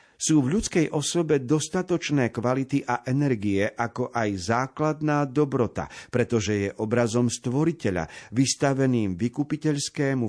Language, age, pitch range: Slovak, 50-69, 105-140 Hz